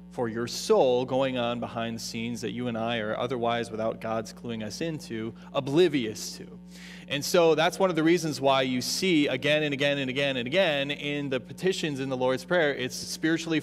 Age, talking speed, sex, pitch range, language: 30-49, 205 wpm, male, 125-175 Hz, English